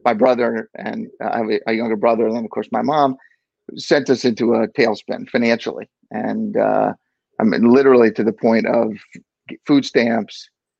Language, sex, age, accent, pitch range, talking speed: English, male, 50-69, American, 115-140 Hz, 170 wpm